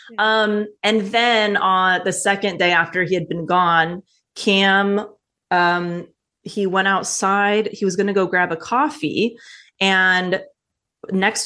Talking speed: 135 wpm